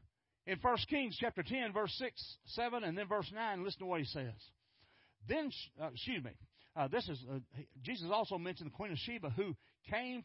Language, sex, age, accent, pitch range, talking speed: English, male, 50-69, American, 120-195 Hz, 200 wpm